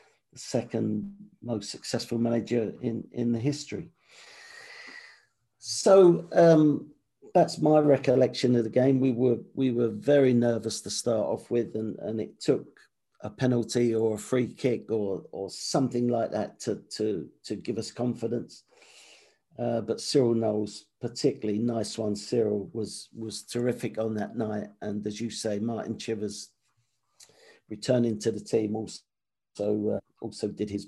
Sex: male